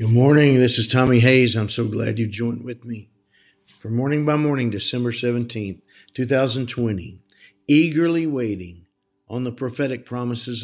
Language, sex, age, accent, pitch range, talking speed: English, male, 50-69, American, 105-140 Hz, 145 wpm